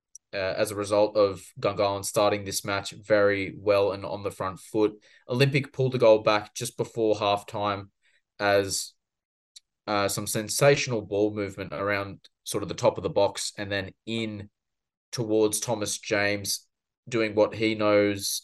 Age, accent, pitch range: 20-39, Australian, 100-110 Hz